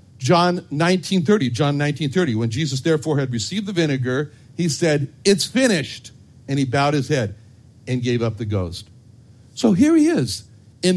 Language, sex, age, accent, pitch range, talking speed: English, male, 60-79, American, 125-200 Hz, 175 wpm